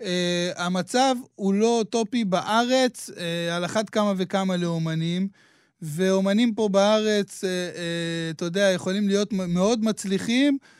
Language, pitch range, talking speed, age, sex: Hebrew, 180-220 Hz, 130 wpm, 20-39, male